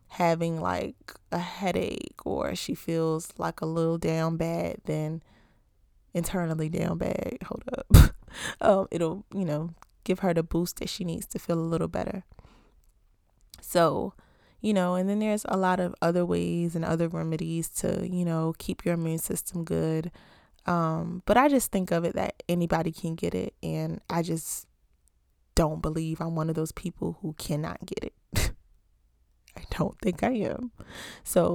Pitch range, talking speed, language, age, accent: 160-180 Hz, 165 wpm, English, 20-39, American